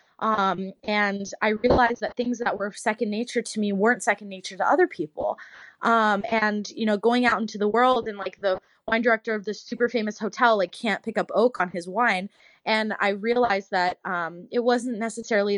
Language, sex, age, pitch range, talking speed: English, female, 20-39, 185-230 Hz, 205 wpm